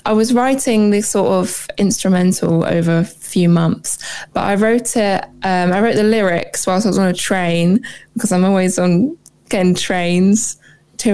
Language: English